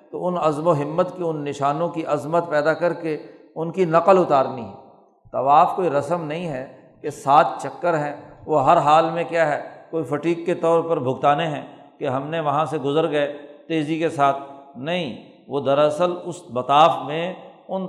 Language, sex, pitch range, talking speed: Urdu, male, 150-175 Hz, 190 wpm